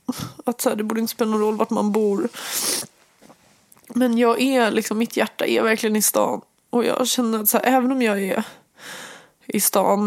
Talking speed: 195 wpm